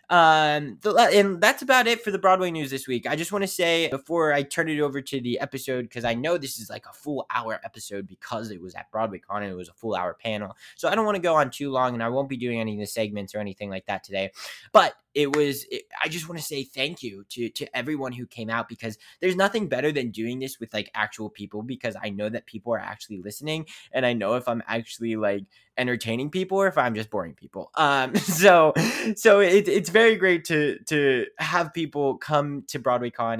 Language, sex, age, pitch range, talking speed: English, male, 20-39, 115-155 Hz, 245 wpm